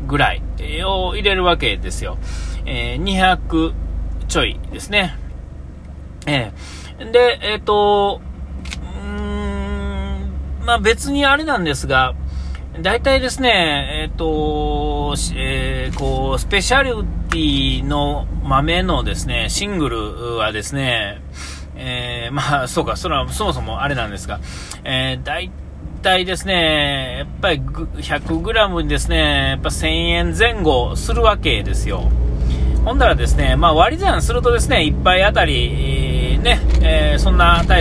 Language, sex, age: Japanese, male, 40-59